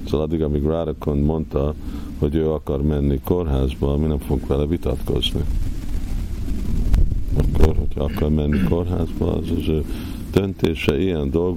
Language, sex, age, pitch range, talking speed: Hungarian, male, 50-69, 75-90 Hz, 130 wpm